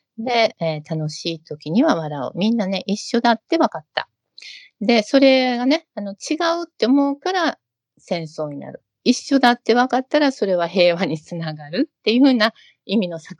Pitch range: 160-245 Hz